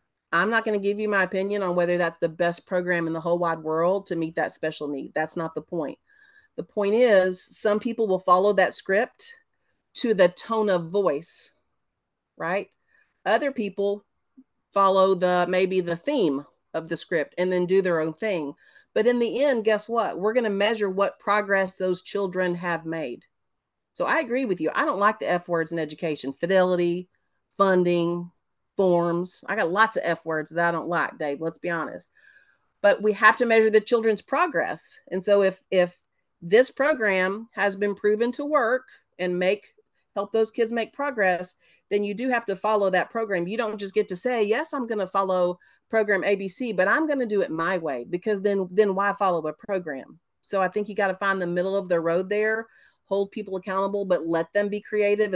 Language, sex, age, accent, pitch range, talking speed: English, female, 40-59, American, 175-215 Hz, 200 wpm